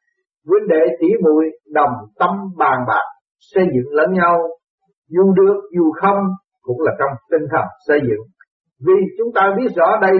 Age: 60-79